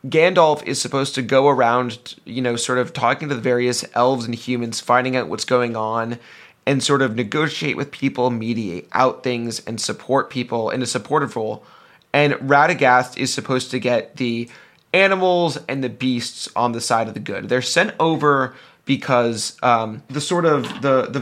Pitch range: 115-140 Hz